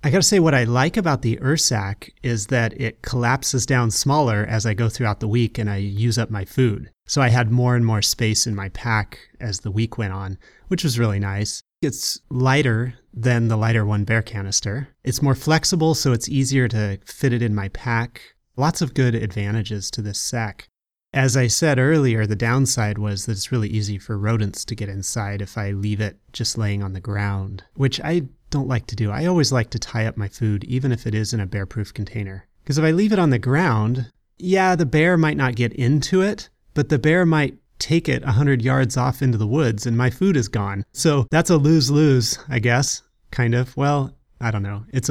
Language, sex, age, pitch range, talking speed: English, male, 30-49, 105-135 Hz, 220 wpm